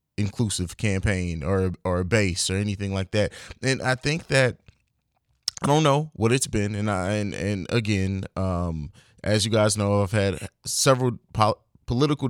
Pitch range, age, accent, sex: 95-120 Hz, 20-39, American, male